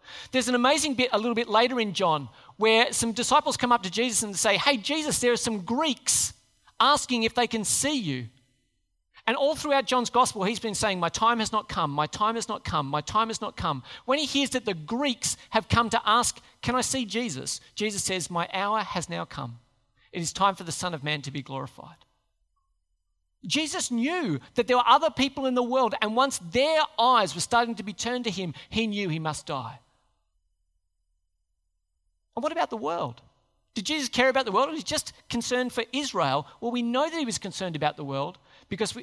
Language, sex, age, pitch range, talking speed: English, male, 40-59, 155-245 Hz, 215 wpm